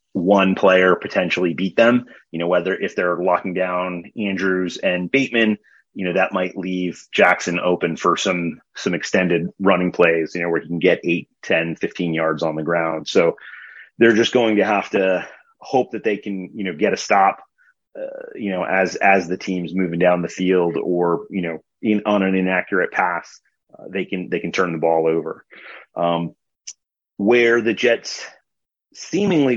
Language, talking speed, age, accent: English, 185 wpm, 30-49, American